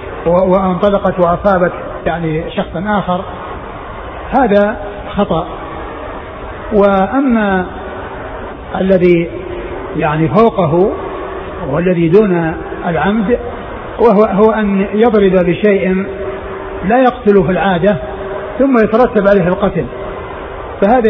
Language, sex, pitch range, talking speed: Arabic, male, 175-210 Hz, 75 wpm